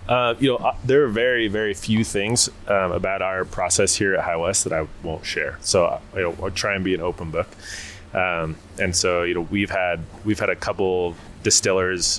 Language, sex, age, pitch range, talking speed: English, male, 20-39, 90-105 Hz, 200 wpm